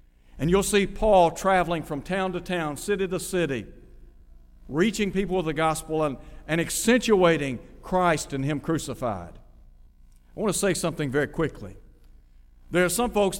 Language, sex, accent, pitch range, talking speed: English, male, American, 135-180 Hz, 155 wpm